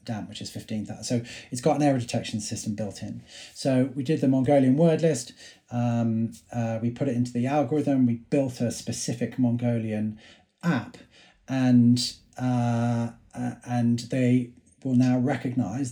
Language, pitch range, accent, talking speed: English, 120-140 Hz, British, 155 wpm